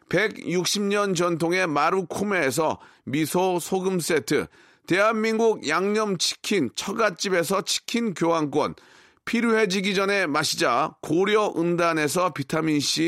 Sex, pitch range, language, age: male, 170-215 Hz, Korean, 40-59